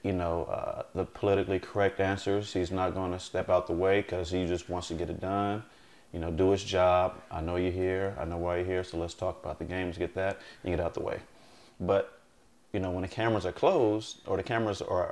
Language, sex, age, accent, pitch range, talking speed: English, male, 30-49, American, 90-100 Hz, 245 wpm